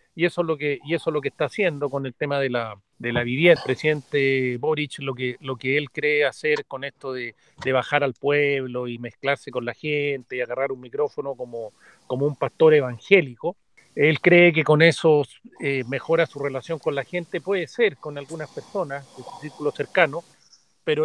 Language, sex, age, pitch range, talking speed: Spanish, male, 40-59, 145-190 Hz, 210 wpm